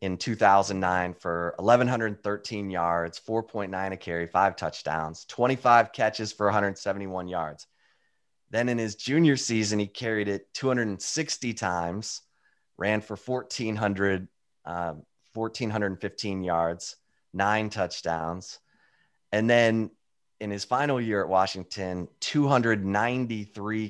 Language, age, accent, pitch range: English, 30-49, American, 95-115 Hz